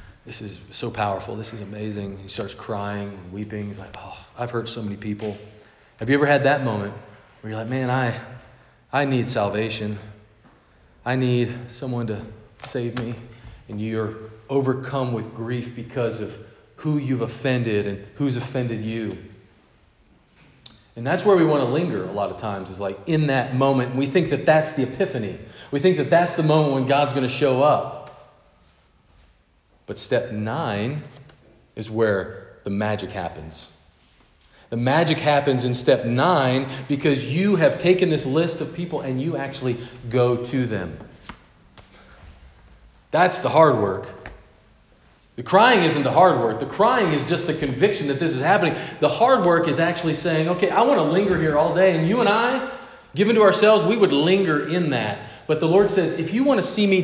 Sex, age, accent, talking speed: male, 40-59, American, 180 wpm